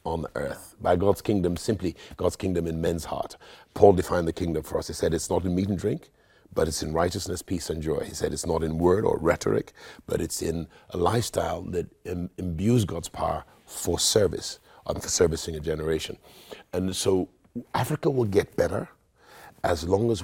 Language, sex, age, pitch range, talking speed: English, male, 50-69, 85-95 Hz, 195 wpm